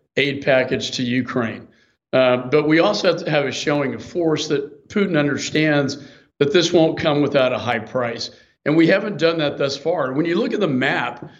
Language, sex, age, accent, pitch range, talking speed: English, male, 50-69, American, 140-165 Hz, 205 wpm